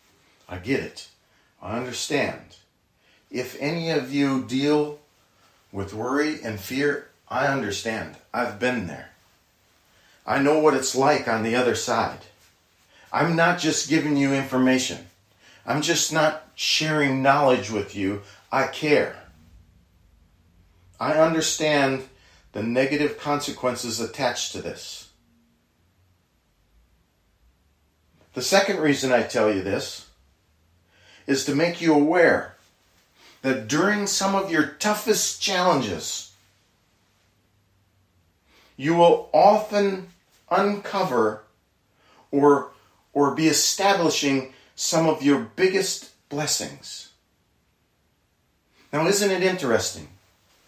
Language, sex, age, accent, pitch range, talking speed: English, male, 40-59, American, 95-160 Hz, 105 wpm